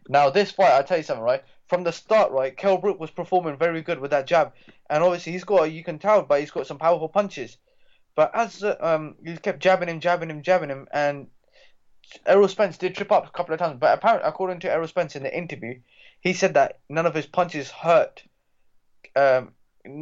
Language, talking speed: English, 220 wpm